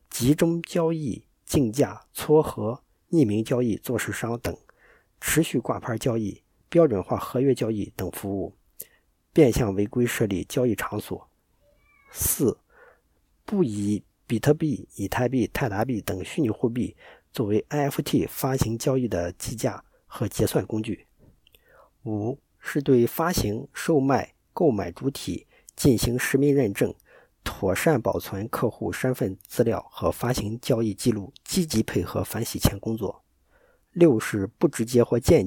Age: 50-69